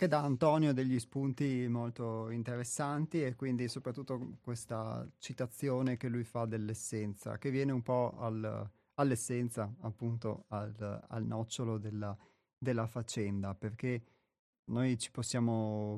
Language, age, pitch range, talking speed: Italian, 30-49, 110-125 Hz, 125 wpm